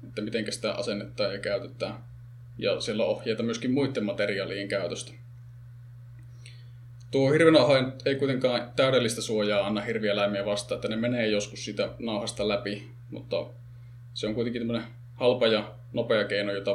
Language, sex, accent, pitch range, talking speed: Finnish, male, native, 110-120 Hz, 140 wpm